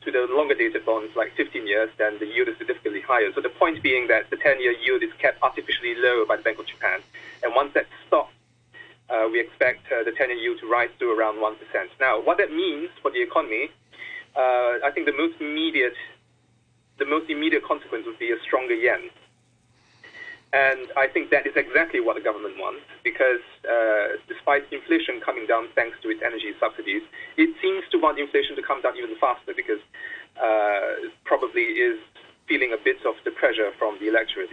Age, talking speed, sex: 30-49, 195 wpm, male